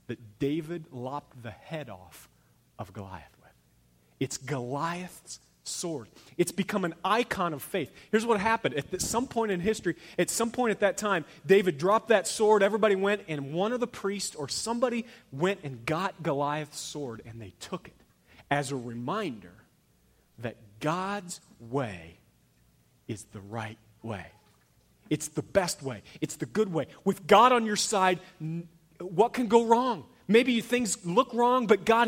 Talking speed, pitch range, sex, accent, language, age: 165 wpm, 125-200 Hz, male, American, English, 30-49